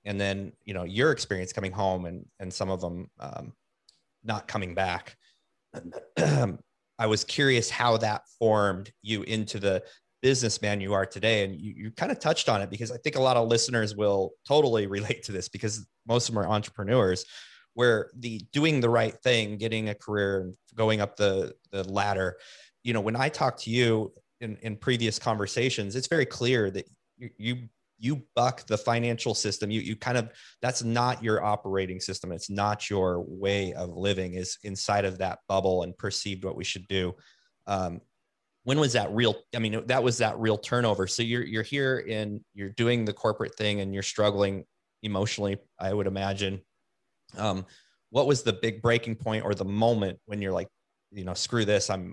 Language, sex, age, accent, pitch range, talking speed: English, male, 30-49, American, 95-115 Hz, 190 wpm